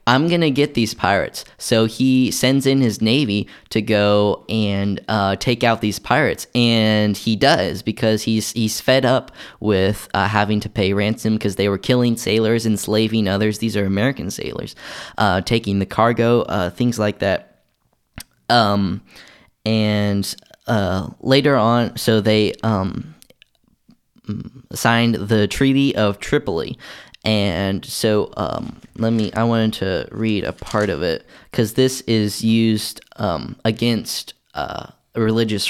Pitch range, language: 105-125 Hz, English